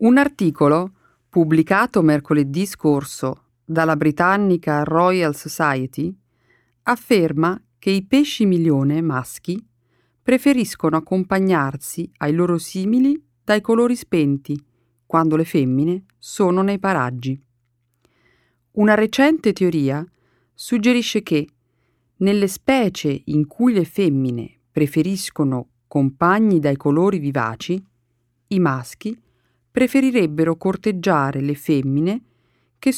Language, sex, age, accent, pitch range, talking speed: Italian, female, 40-59, native, 130-200 Hz, 95 wpm